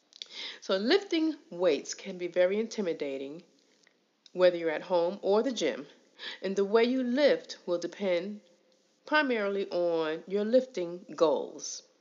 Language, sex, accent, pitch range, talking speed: English, female, American, 175-255 Hz, 130 wpm